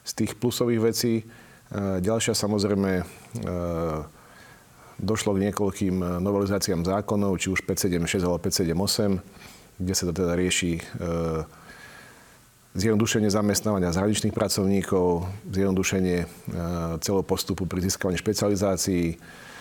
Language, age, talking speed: Slovak, 40-59, 95 wpm